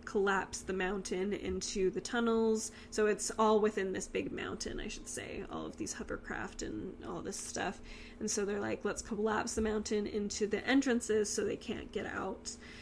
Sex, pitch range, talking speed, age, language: female, 200-225 Hz, 185 wpm, 10-29, English